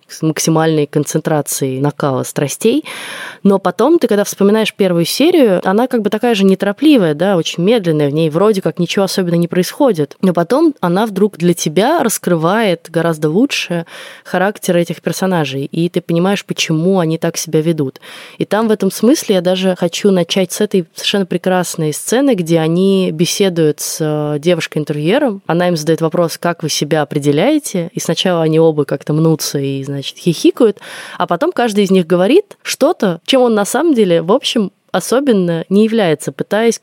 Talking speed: 170 wpm